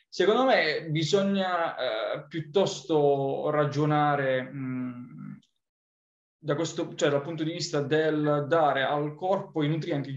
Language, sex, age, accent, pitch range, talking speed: Italian, male, 20-39, native, 140-165 Hz, 120 wpm